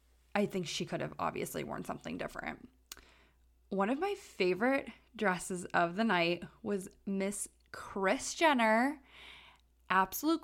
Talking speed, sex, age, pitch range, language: 125 wpm, female, 20-39, 175-230 Hz, English